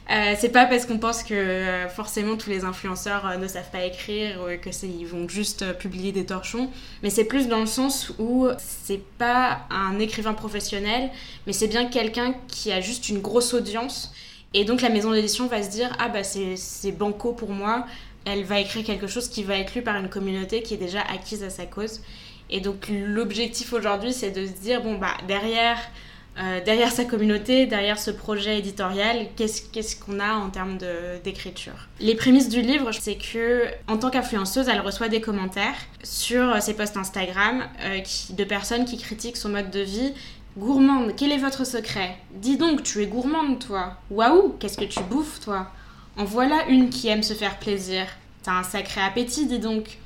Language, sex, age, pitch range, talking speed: French, female, 10-29, 195-235 Hz, 200 wpm